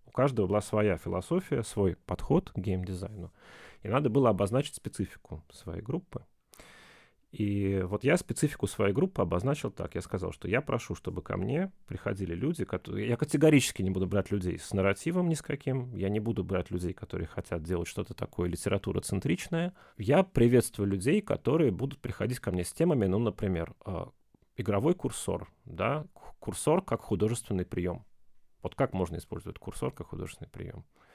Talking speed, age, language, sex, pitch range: 160 wpm, 30-49, Russian, male, 95-130 Hz